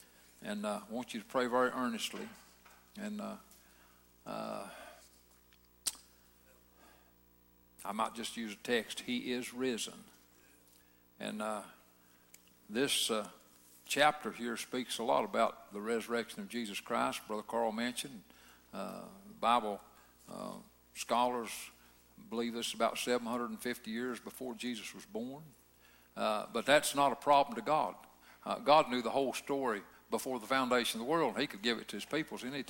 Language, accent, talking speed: English, American, 150 wpm